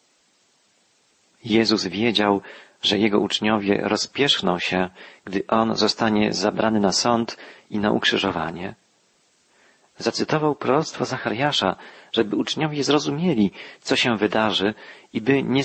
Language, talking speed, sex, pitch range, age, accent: Polish, 105 wpm, male, 105-140 Hz, 40-59, native